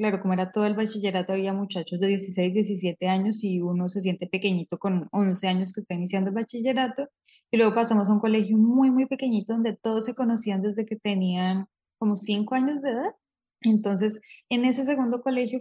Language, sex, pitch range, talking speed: Spanish, female, 195-230 Hz, 195 wpm